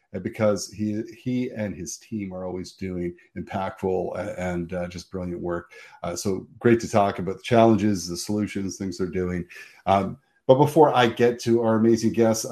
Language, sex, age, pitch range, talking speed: English, male, 40-59, 95-115 Hz, 175 wpm